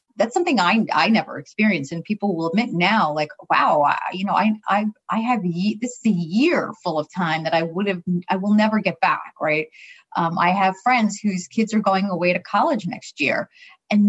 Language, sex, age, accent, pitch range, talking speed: English, female, 30-49, American, 185-230 Hz, 220 wpm